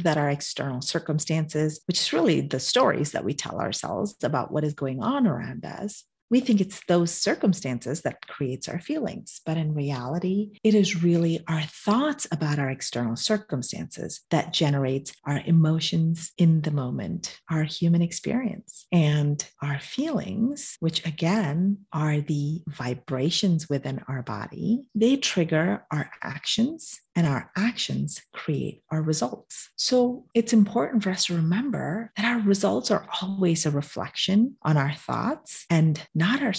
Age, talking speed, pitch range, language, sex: 40-59, 150 wpm, 155-210 Hz, English, female